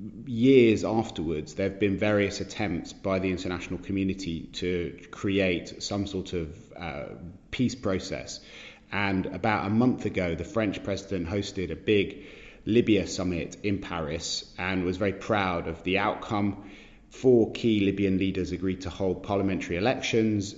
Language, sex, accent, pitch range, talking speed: English, male, British, 90-105 Hz, 145 wpm